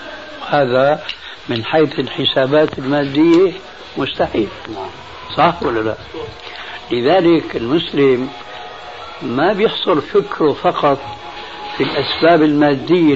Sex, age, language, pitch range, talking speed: male, 60-79, Arabic, 135-175 Hz, 80 wpm